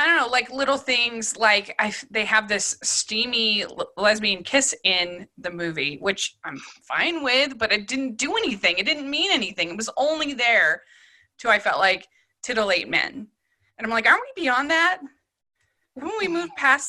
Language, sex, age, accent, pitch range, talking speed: English, female, 20-39, American, 210-305 Hz, 180 wpm